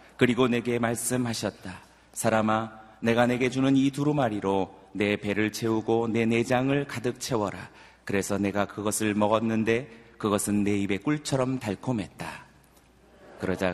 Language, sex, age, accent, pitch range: Korean, male, 30-49, native, 100-120 Hz